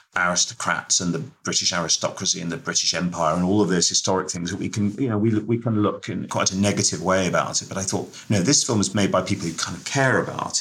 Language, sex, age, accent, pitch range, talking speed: English, male, 40-59, British, 85-115 Hz, 260 wpm